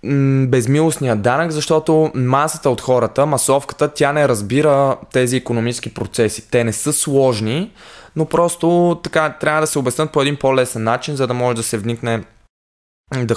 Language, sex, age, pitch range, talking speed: Bulgarian, male, 20-39, 105-140 Hz, 155 wpm